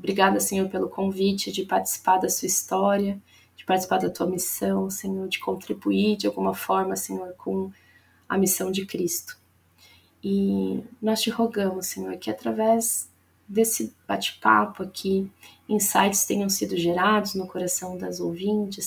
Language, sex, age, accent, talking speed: English, female, 20-39, Brazilian, 140 wpm